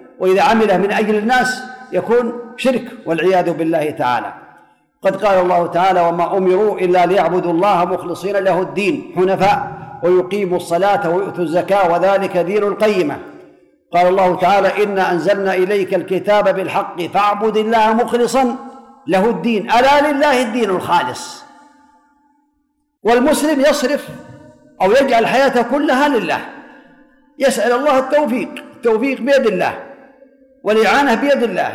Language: Arabic